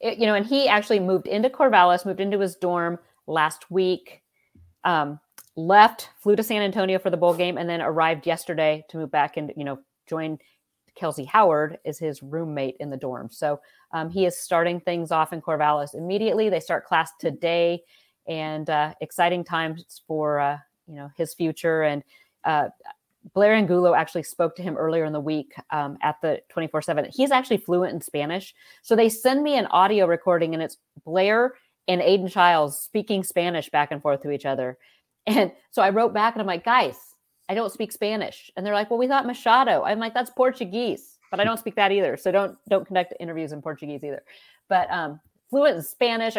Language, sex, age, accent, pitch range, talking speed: English, female, 40-59, American, 155-205 Hz, 200 wpm